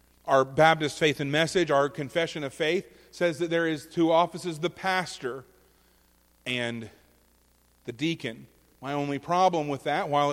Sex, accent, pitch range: male, American, 110-180 Hz